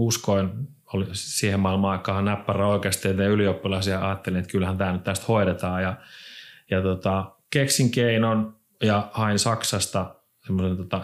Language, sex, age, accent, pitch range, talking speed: Finnish, male, 30-49, native, 95-115 Hz, 120 wpm